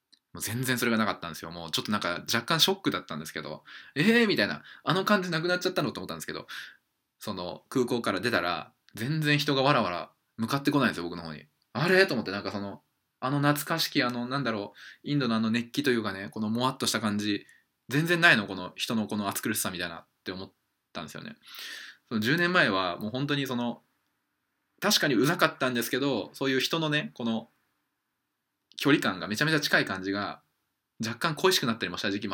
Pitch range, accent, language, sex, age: 100-150 Hz, native, Japanese, male, 20-39